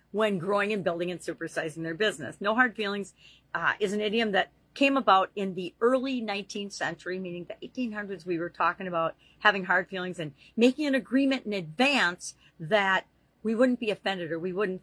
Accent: American